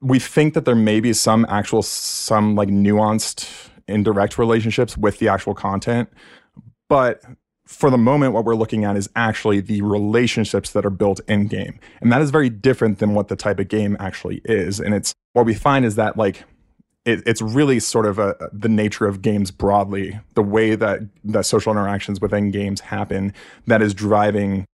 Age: 20-39